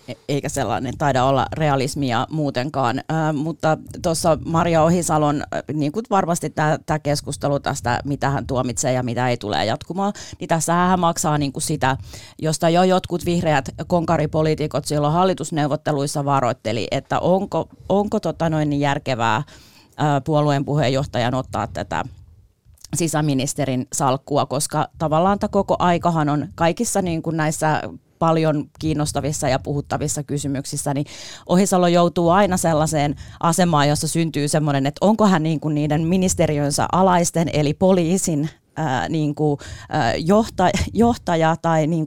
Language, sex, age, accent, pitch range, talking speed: Finnish, female, 30-49, native, 140-170 Hz, 130 wpm